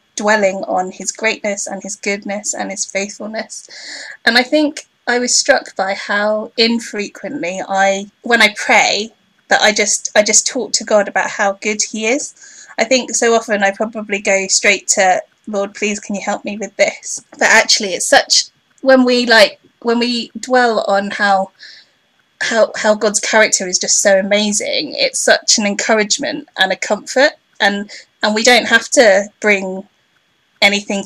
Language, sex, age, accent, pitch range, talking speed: English, female, 20-39, British, 195-235 Hz, 170 wpm